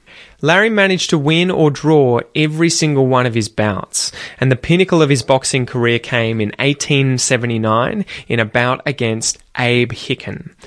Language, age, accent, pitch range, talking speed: English, 20-39, Australian, 120-155 Hz, 155 wpm